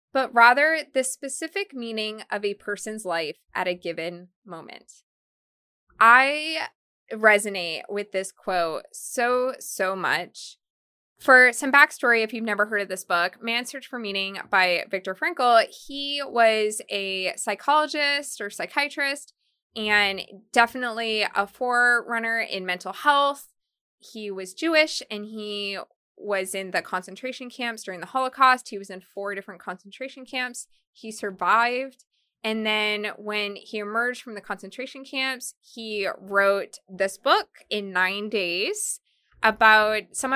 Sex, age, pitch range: female, 20-39, 195-250 Hz